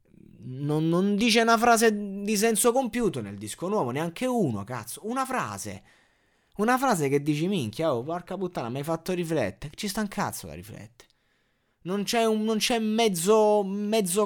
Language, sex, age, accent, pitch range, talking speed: Italian, male, 20-39, native, 125-205 Hz, 175 wpm